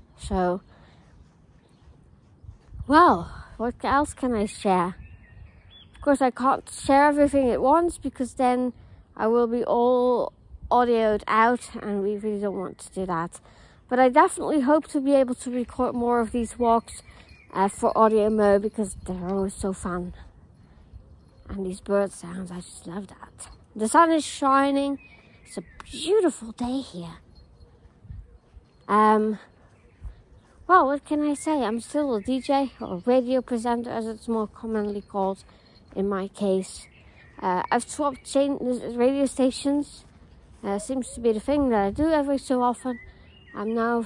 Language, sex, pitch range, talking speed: English, female, 195-260 Hz, 150 wpm